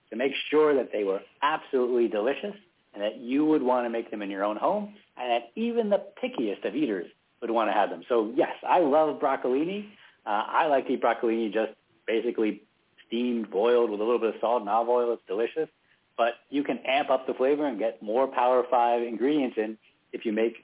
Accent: American